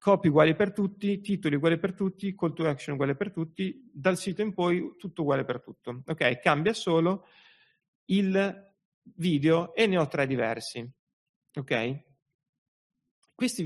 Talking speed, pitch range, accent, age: 150 wpm, 135-185 Hz, native, 30-49